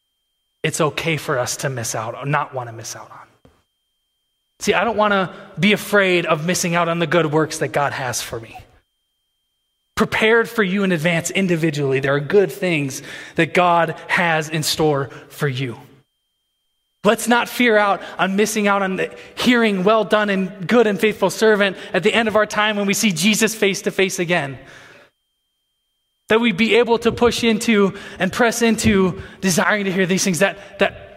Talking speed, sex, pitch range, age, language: 185 wpm, male, 145-205 Hz, 20-39, English